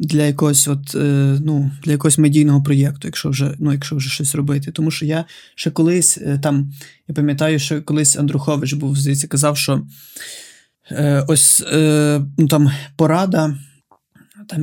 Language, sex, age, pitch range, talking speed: Ukrainian, male, 20-39, 150-165 Hz, 155 wpm